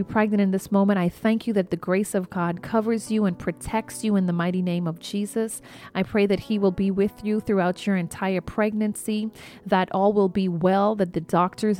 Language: English